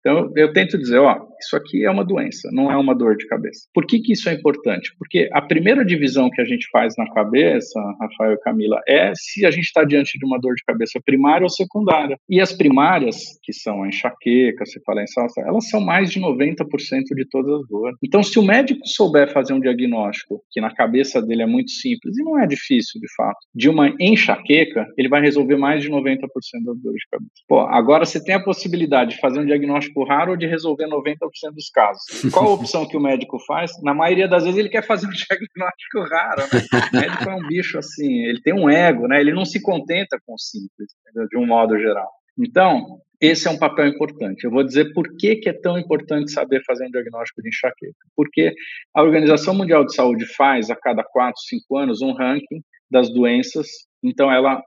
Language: Portuguese